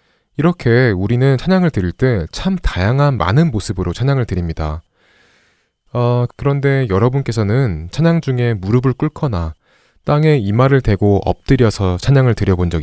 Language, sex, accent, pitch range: Korean, male, native, 95-130 Hz